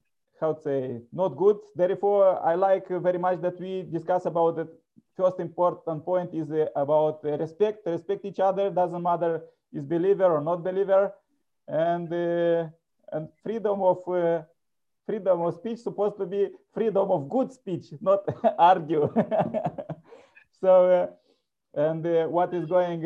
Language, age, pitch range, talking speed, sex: English, 30-49, 160-180 Hz, 150 wpm, male